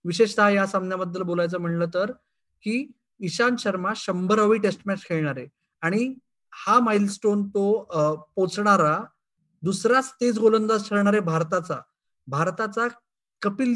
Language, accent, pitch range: Marathi, native, 180-220 Hz